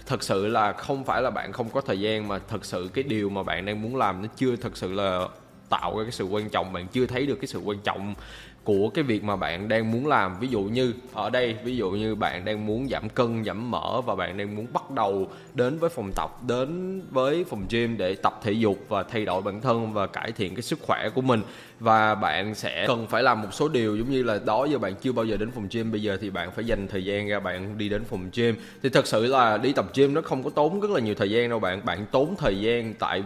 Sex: male